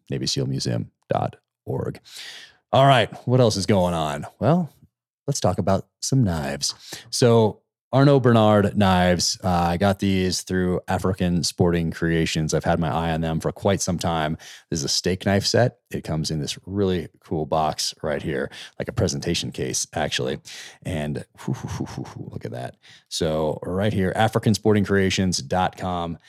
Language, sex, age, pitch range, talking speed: English, male, 30-49, 80-105 Hz, 155 wpm